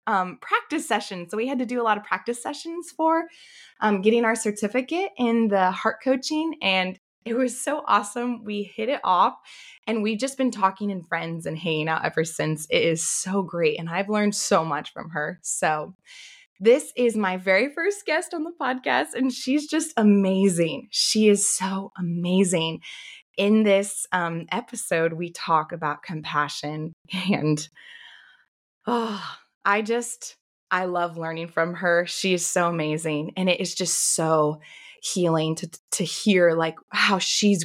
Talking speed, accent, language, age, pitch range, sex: 165 wpm, American, English, 20-39, 165-230 Hz, female